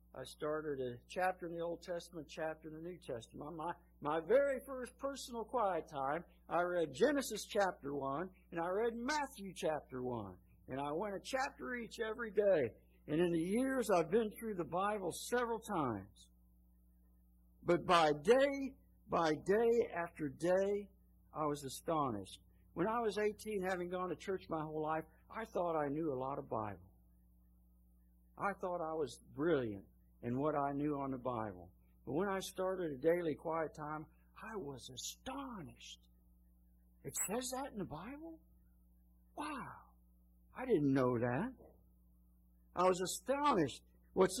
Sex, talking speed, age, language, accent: male, 160 wpm, 60-79, English, American